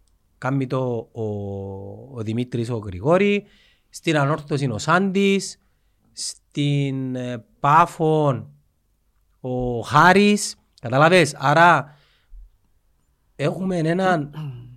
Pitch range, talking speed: 125-175 Hz, 75 wpm